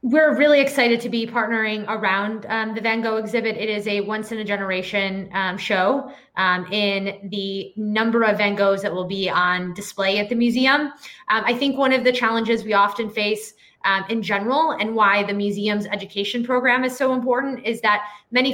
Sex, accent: female, American